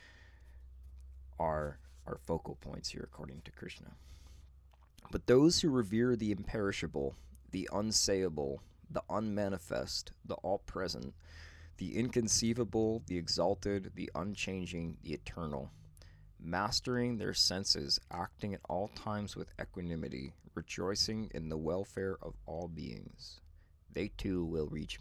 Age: 20-39